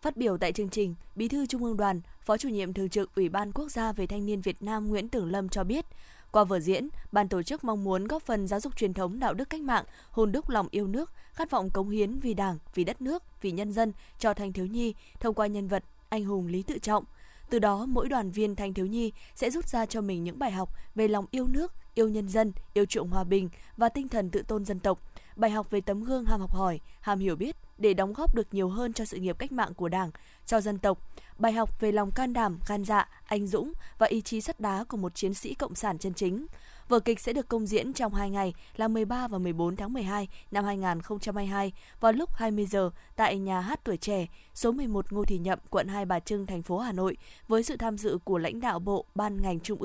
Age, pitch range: 10-29, 195-225 Hz